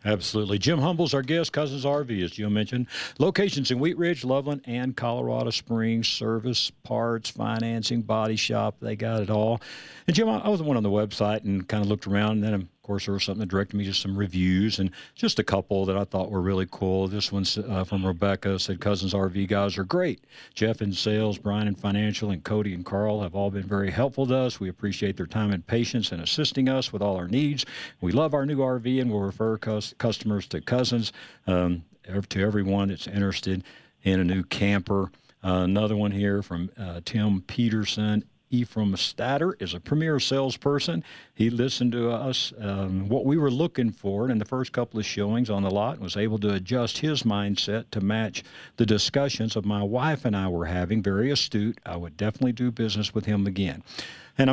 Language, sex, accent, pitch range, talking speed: English, male, American, 100-120 Hz, 205 wpm